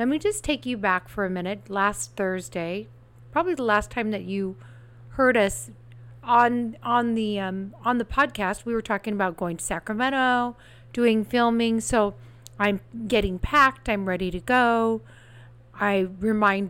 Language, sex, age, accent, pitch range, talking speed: English, female, 40-59, American, 175-235 Hz, 160 wpm